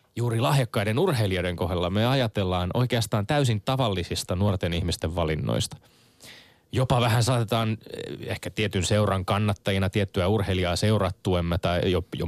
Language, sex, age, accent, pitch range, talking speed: Finnish, male, 20-39, native, 95-125 Hz, 120 wpm